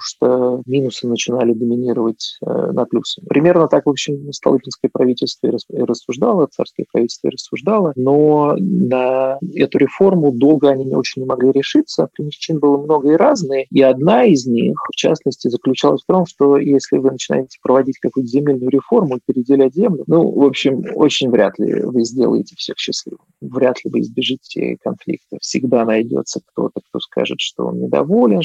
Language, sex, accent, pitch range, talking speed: Russian, male, native, 120-155 Hz, 160 wpm